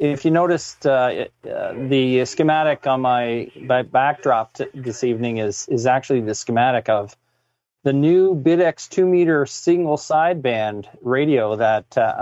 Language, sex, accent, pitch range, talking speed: English, male, American, 120-145 Hz, 145 wpm